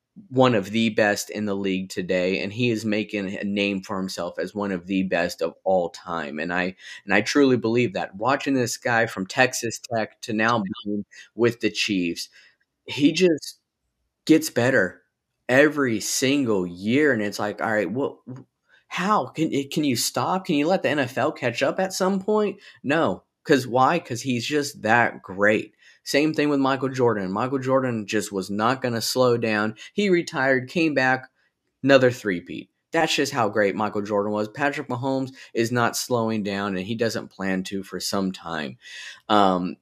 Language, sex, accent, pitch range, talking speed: English, male, American, 100-135 Hz, 180 wpm